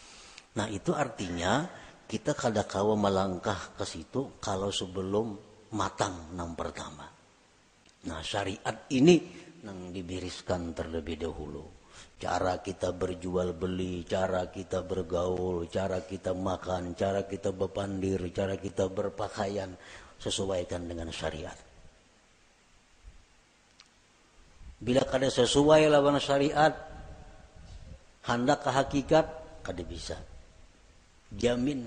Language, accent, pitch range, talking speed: Indonesian, native, 90-135 Hz, 95 wpm